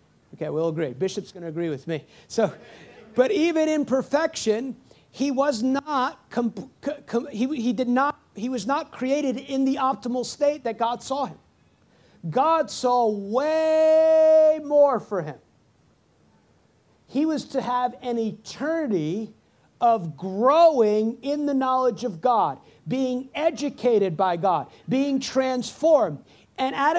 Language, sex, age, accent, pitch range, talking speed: English, male, 40-59, American, 225-285 Hz, 140 wpm